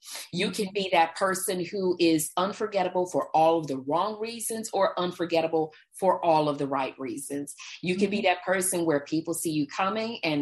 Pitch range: 150-195 Hz